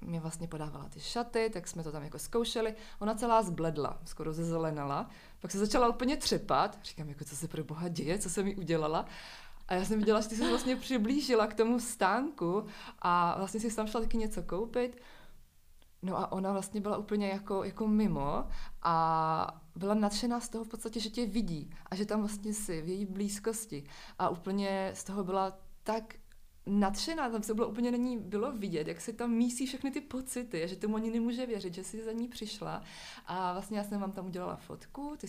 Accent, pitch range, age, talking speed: native, 175-220 Hz, 20-39, 200 wpm